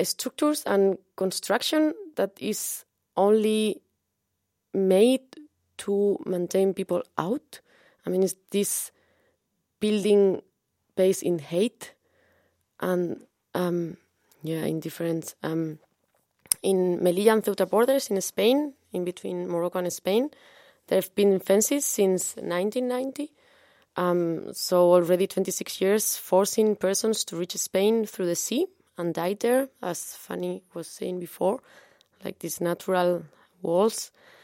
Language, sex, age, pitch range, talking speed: German, female, 20-39, 175-220 Hz, 120 wpm